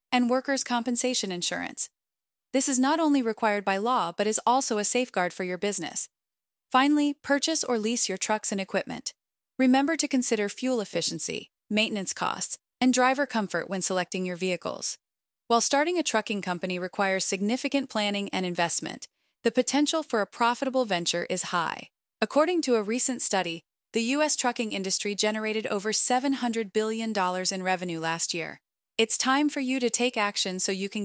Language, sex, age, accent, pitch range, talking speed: English, female, 30-49, American, 185-250 Hz, 165 wpm